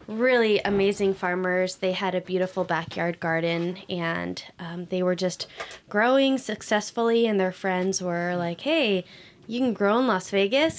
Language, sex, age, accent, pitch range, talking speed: English, female, 10-29, American, 175-200 Hz, 155 wpm